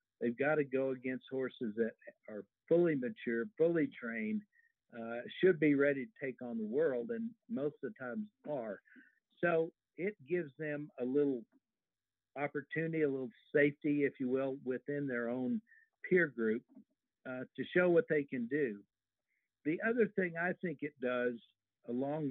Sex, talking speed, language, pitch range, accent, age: male, 160 wpm, English, 125-185 Hz, American, 60-79